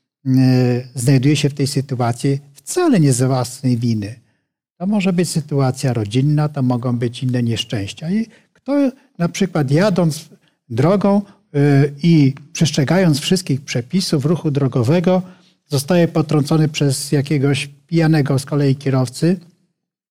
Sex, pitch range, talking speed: male, 135-170 Hz, 125 wpm